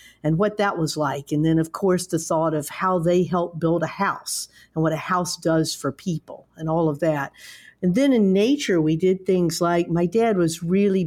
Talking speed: 220 wpm